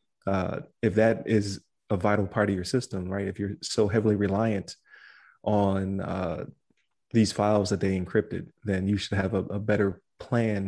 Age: 20-39